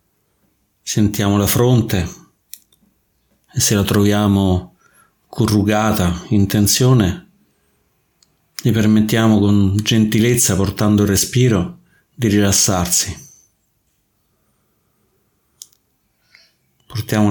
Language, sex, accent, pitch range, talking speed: Italian, male, native, 95-115 Hz, 70 wpm